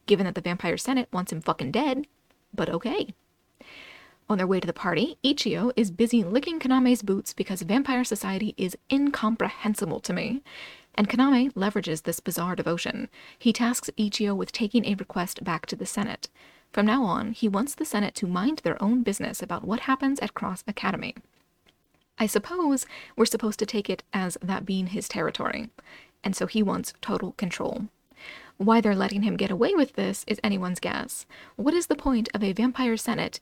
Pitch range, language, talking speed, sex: 195-255 Hz, English, 185 wpm, female